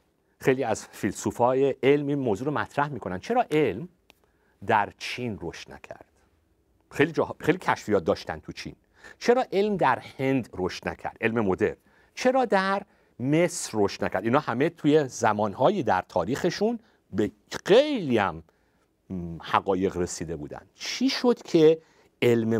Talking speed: 135 wpm